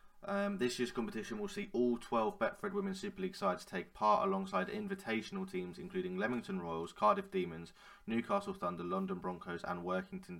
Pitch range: 185-200 Hz